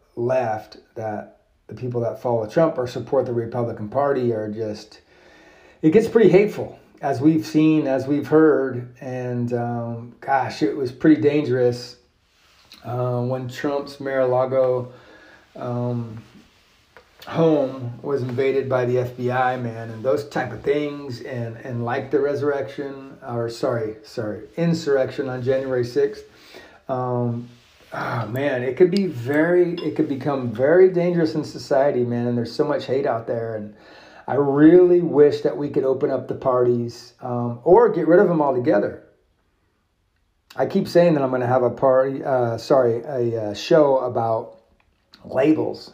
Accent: American